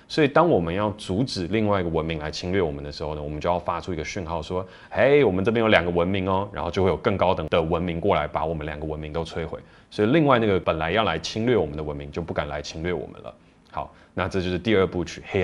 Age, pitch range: 20-39, 80-100 Hz